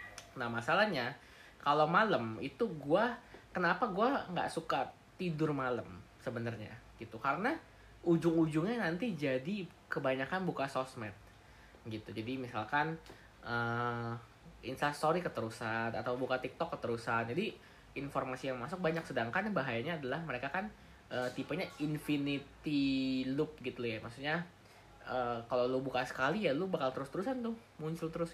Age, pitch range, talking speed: 20-39, 120-160 Hz, 125 wpm